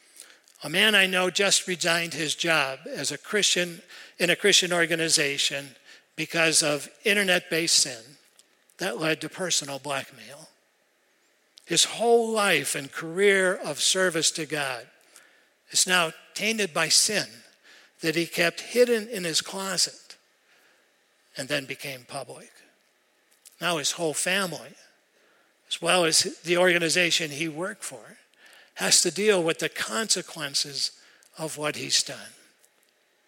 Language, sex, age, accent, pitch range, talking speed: English, male, 60-79, American, 150-185 Hz, 130 wpm